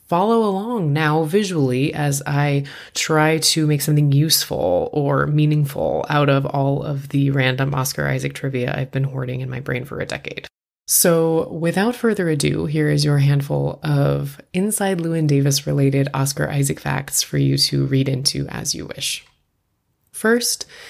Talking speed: 160 wpm